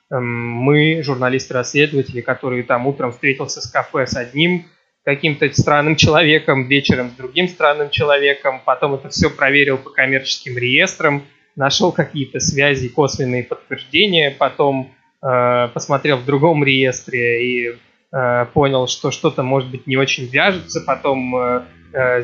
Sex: male